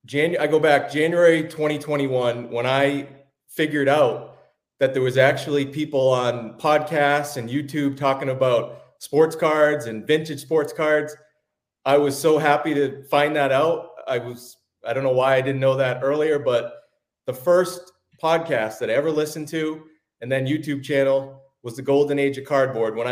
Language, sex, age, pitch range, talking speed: English, male, 30-49, 125-150 Hz, 165 wpm